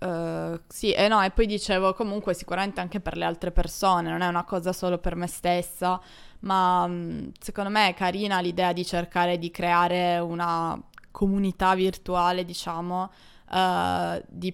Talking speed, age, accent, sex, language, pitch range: 150 wpm, 20-39, native, female, Italian, 175-195 Hz